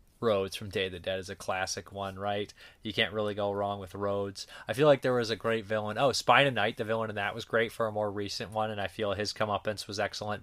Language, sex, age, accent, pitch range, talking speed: English, male, 20-39, American, 100-120 Hz, 275 wpm